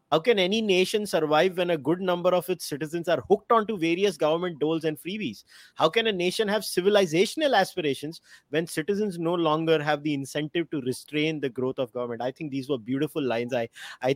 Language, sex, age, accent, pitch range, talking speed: English, male, 30-49, Indian, 140-180 Hz, 205 wpm